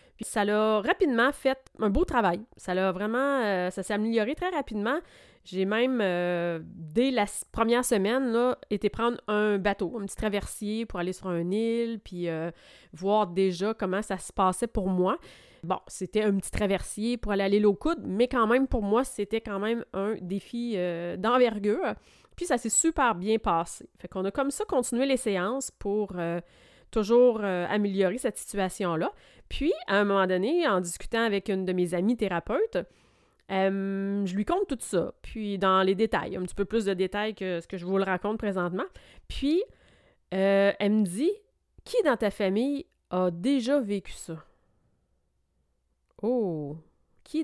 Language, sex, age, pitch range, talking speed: French, female, 30-49, 185-235 Hz, 180 wpm